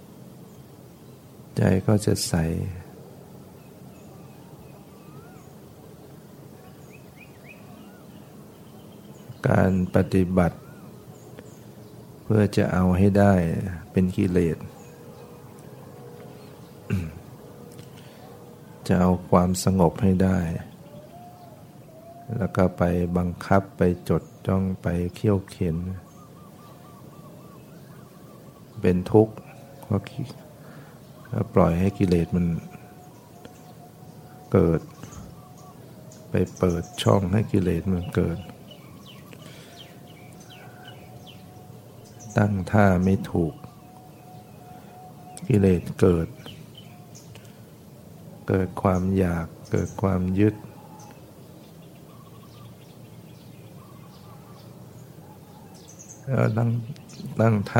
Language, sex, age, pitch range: Thai, male, 60-79, 90-110 Hz